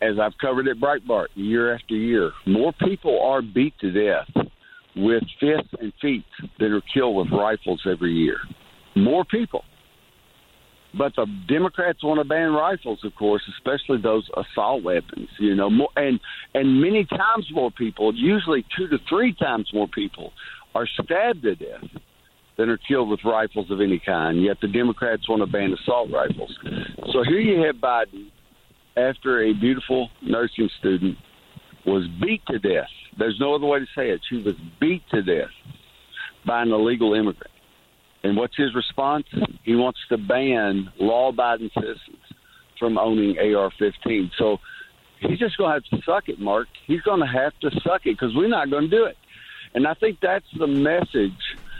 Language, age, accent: English, 60-79, American